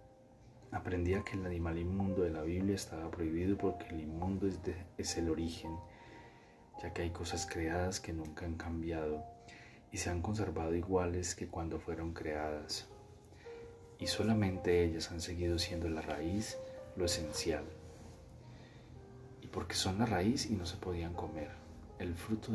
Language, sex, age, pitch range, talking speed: Spanish, male, 30-49, 85-105 Hz, 155 wpm